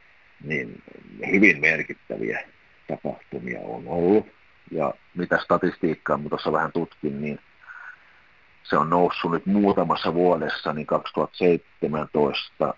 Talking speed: 105 wpm